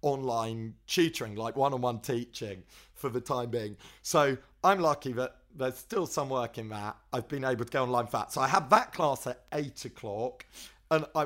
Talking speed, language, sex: 195 wpm, English, male